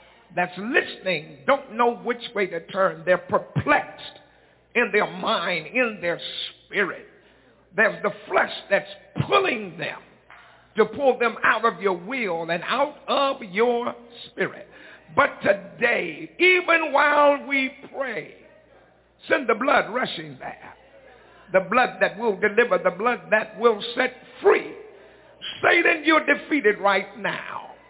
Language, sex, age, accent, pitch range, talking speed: English, male, 60-79, American, 205-275 Hz, 130 wpm